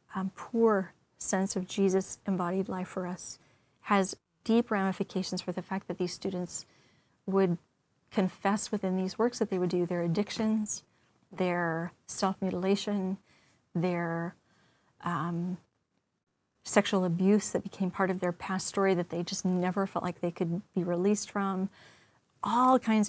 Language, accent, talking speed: English, American, 145 wpm